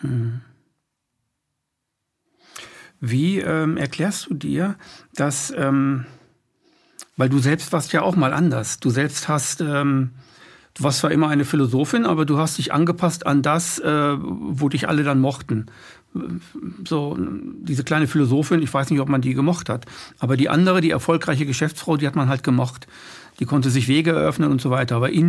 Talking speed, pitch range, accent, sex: 170 wpm, 135-165 Hz, German, male